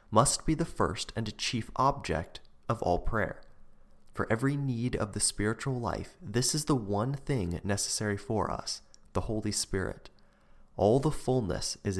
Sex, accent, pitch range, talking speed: male, American, 95-125 Hz, 160 wpm